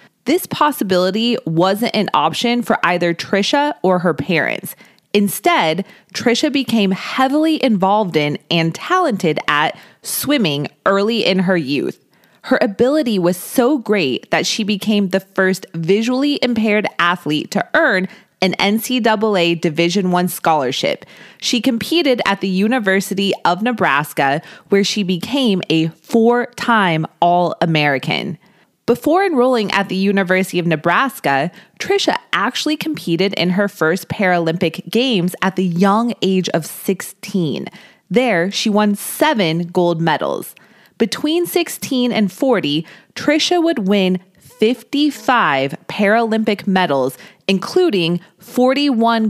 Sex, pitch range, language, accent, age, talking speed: female, 175-235 Hz, English, American, 20-39, 120 wpm